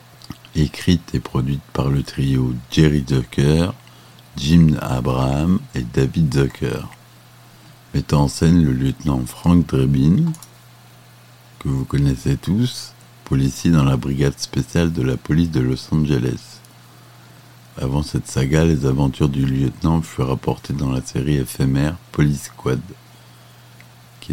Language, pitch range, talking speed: French, 65-75 Hz, 125 wpm